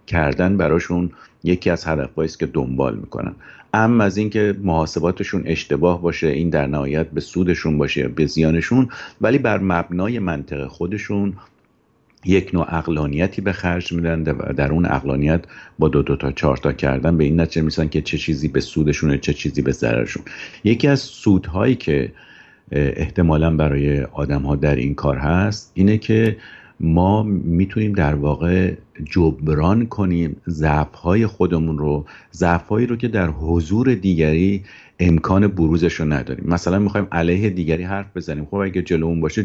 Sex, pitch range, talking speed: male, 75-100 Hz, 155 wpm